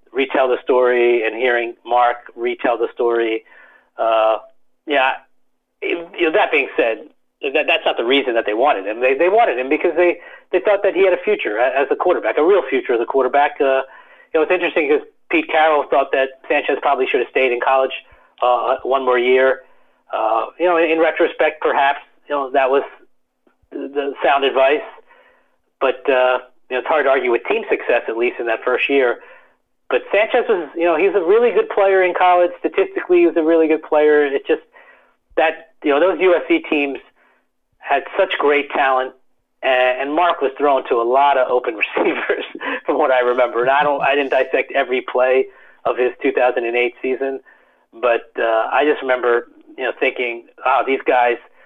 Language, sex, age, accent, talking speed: English, male, 40-59, American, 195 wpm